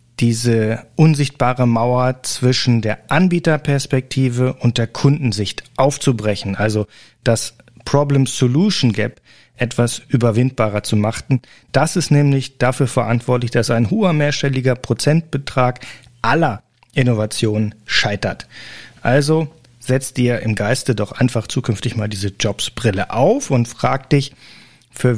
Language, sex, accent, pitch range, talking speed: German, male, German, 115-140 Hz, 110 wpm